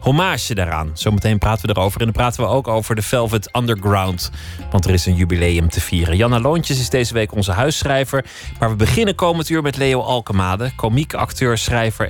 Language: Dutch